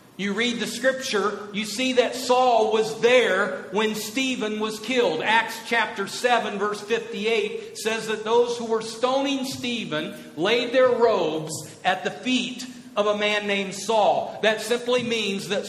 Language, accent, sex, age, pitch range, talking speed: English, American, male, 50-69, 185-240 Hz, 155 wpm